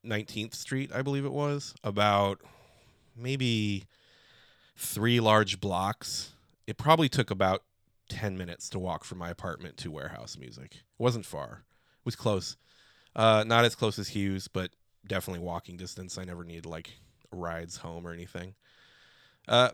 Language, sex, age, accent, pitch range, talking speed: English, male, 30-49, American, 95-120 Hz, 150 wpm